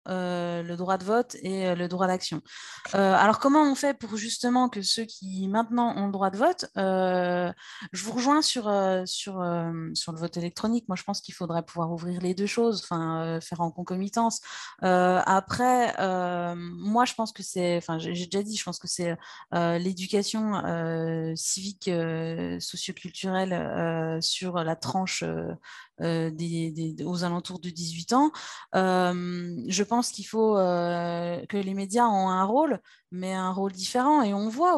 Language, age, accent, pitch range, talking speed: French, 30-49, French, 175-220 Hz, 185 wpm